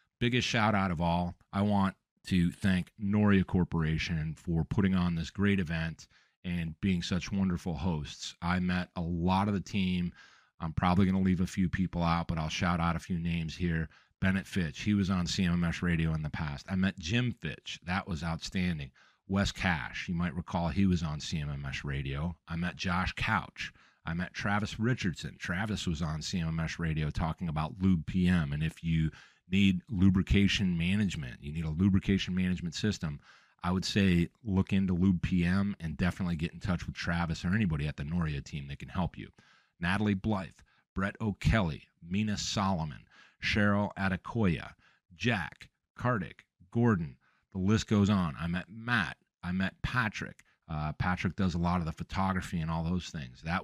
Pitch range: 85-95 Hz